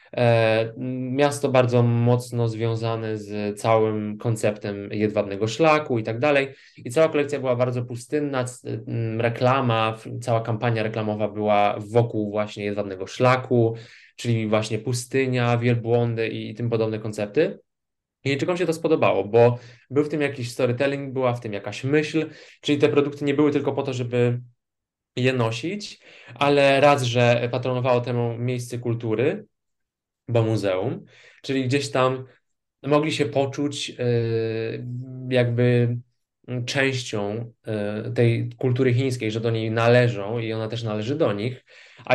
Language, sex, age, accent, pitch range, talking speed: Polish, male, 20-39, native, 115-130 Hz, 130 wpm